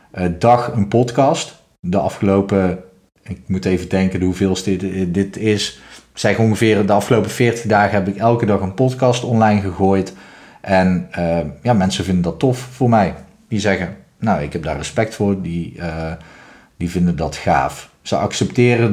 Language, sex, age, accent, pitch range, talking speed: Dutch, male, 40-59, Dutch, 95-115 Hz, 170 wpm